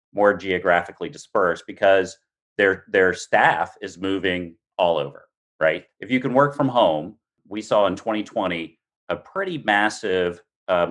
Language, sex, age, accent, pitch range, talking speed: English, male, 40-59, American, 85-125 Hz, 145 wpm